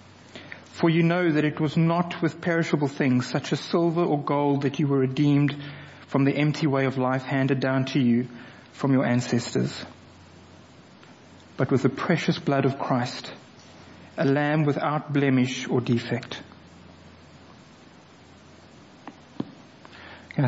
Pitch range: 125-150 Hz